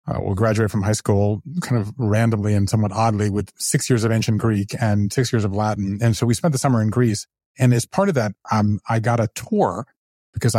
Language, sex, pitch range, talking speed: English, male, 110-130 Hz, 240 wpm